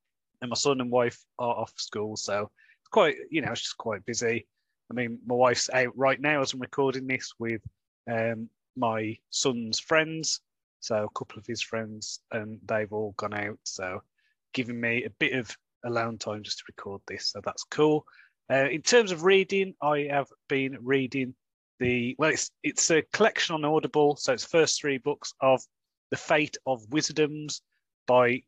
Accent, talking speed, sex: British, 180 wpm, male